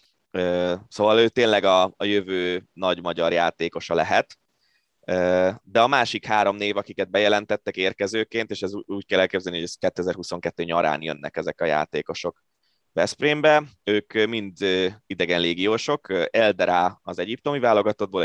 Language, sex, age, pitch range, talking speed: Hungarian, male, 20-39, 85-110 Hz, 130 wpm